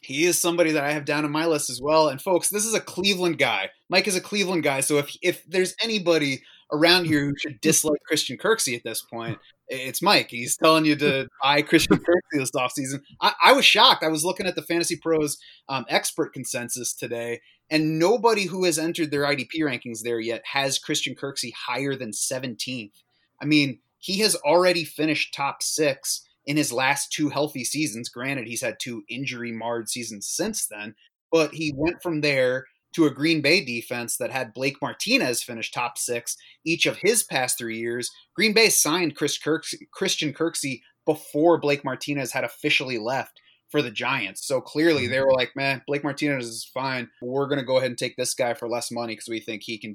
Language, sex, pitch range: English, male, 125-160 Hz